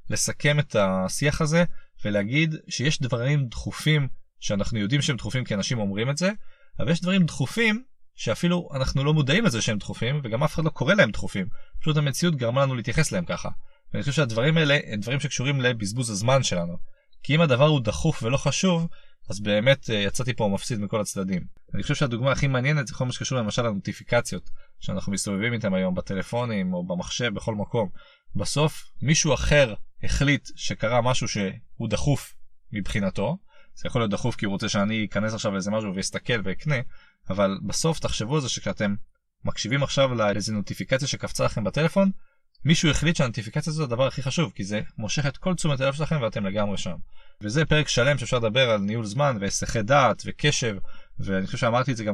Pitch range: 105-155 Hz